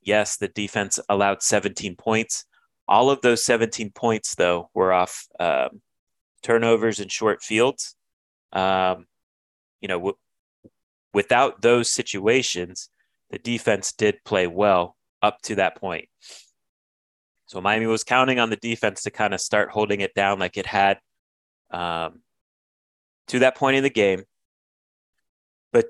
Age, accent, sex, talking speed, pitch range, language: 30-49, American, male, 140 wpm, 95-110 Hz, English